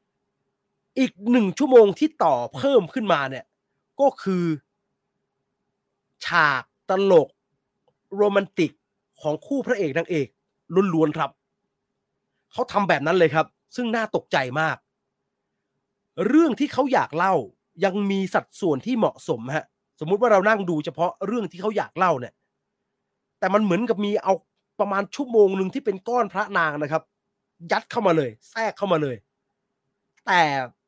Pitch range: 175-250 Hz